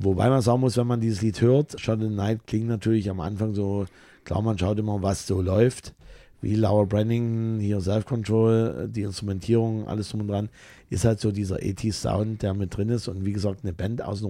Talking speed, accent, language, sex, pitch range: 225 wpm, German, German, male, 100-115 Hz